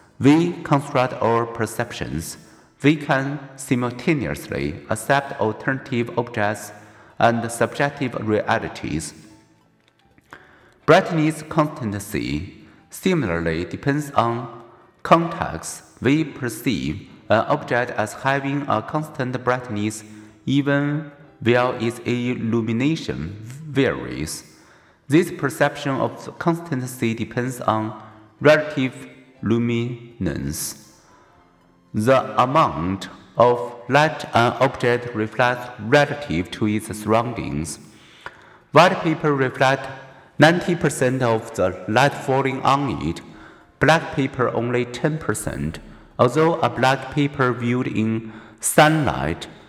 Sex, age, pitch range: male, 50-69, 110-140 Hz